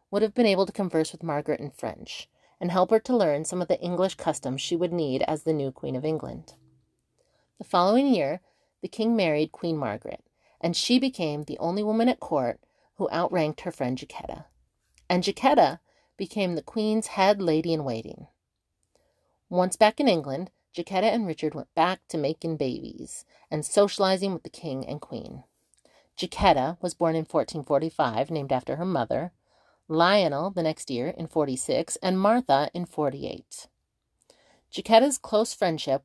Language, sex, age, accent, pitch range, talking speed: English, female, 40-59, American, 150-195 Hz, 165 wpm